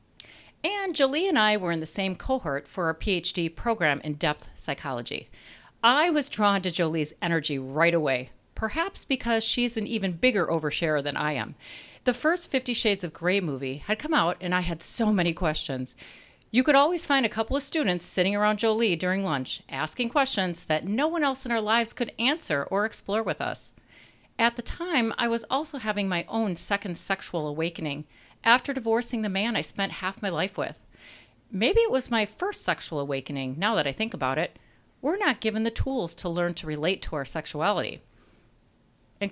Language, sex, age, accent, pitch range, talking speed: English, female, 40-59, American, 170-245 Hz, 190 wpm